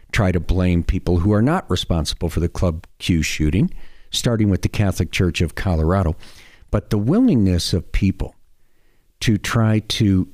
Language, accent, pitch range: English, American, 90-110 Hz